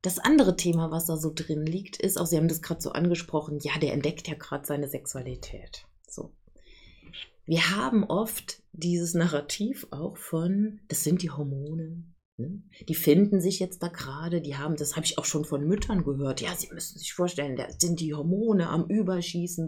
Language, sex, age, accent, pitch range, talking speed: German, female, 30-49, German, 150-185 Hz, 185 wpm